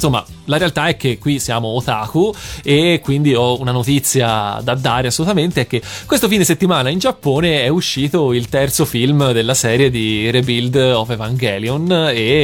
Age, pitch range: 30-49, 115-135 Hz